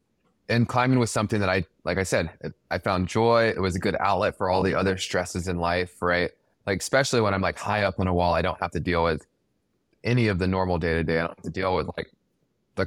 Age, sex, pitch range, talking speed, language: 20-39, male, 85-110 Hz, 250 wpm, English